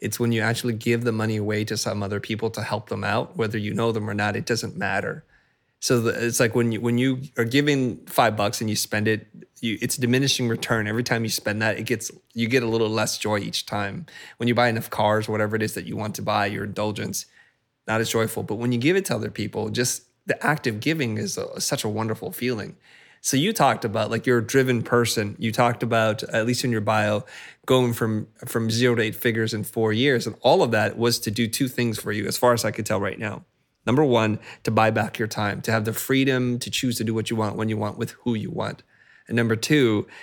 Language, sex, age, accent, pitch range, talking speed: English, male, 20-39, American, 110-120 Hz, 255 wpm